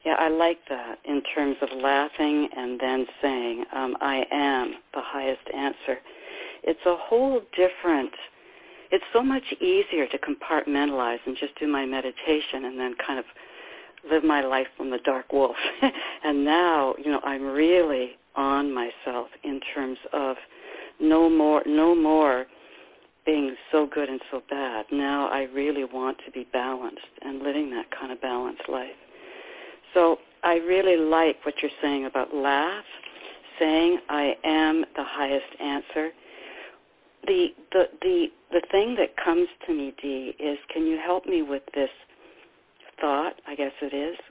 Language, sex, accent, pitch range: English, female, American, 135-170 Hz